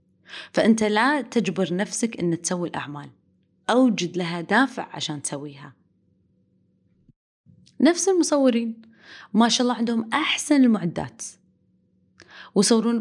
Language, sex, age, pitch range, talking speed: Arabic, female, 20-39, 160-230 Hz, 95 wpm